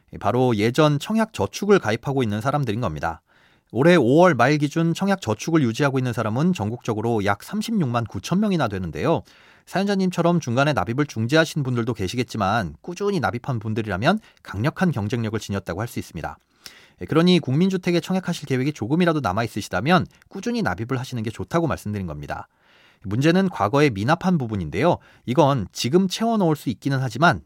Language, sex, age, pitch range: Korean, male, 30-49, 110-165 Hz